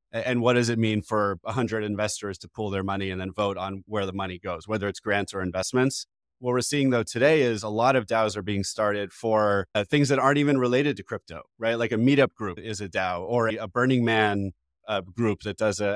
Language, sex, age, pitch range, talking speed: English, male, 30-49, 105-125 Hz, 235 wpm